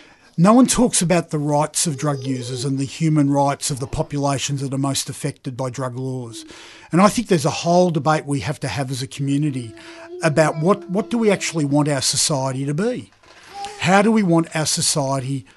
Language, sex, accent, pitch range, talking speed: English, male, Australian, 140-180 Hz, 210 wpm